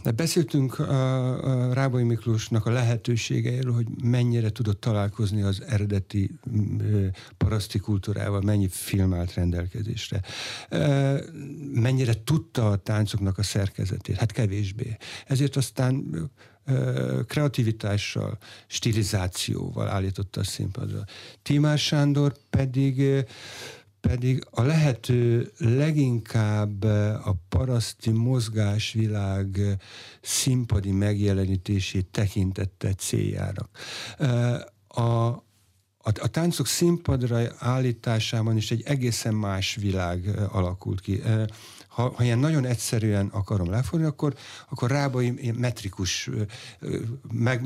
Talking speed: 90 wpm